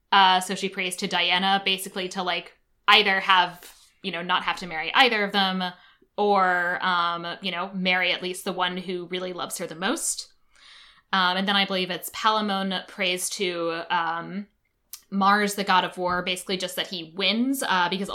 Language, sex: English, female